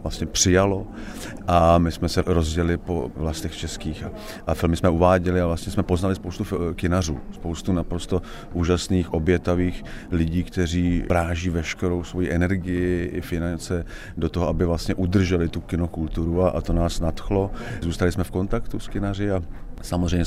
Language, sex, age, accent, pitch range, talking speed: Czech, male, 40-59, native, 85-95 Hz, 155 wpm